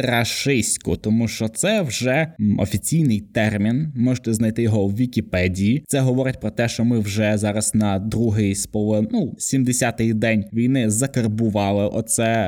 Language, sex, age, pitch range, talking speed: Ukrainian, male, 20-39, 110-160 Hz, 145 wpm